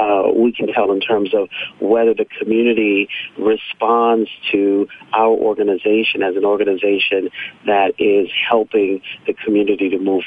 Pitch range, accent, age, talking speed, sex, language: 105-130 Hz, American, 40-59, 140 wpm, male, English